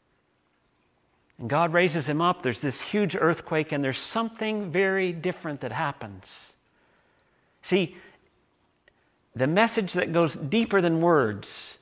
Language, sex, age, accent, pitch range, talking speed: English, male, 50-69, American, 140-185 Hz, 120 wpm